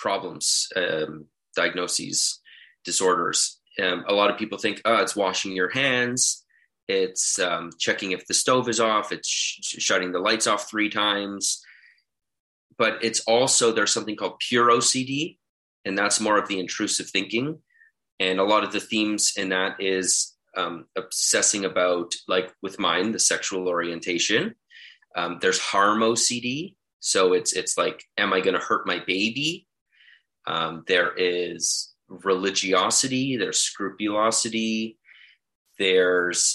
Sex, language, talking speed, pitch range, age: male, English, 140 wpm, 95-130 Hz, 30-49